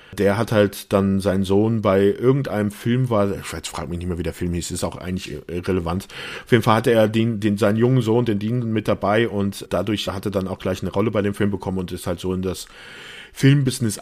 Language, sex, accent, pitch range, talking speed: German, male, German, 95-115 Hz, 250 wpm